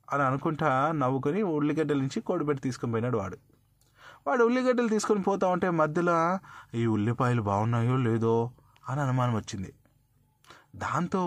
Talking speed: 115 wpm